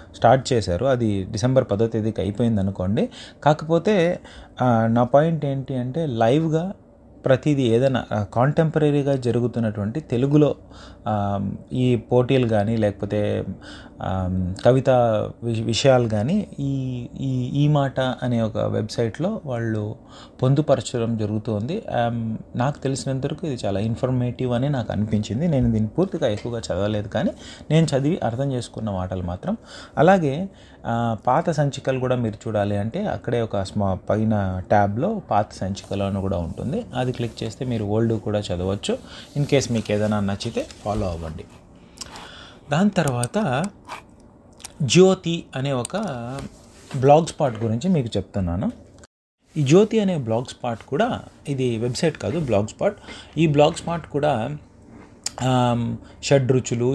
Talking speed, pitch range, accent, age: 75 wpm, 105-140 Hz, Indian, 30-49